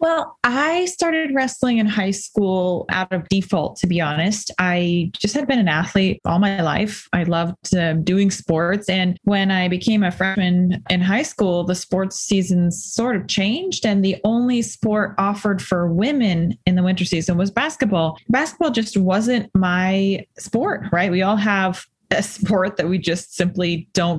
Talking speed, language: 175 wpm, English